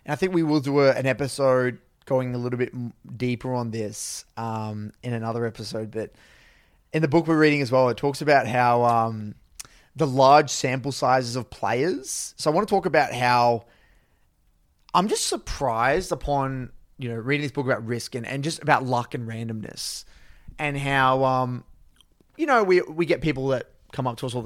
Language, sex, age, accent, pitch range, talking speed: English, male, 20-39, Australian, 125-150 Hz, 195 wpm